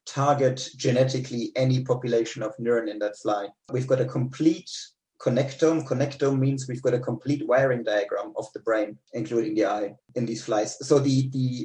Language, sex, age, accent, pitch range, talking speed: English, male, 30-49, German, 125-155 Hz, 175 wpm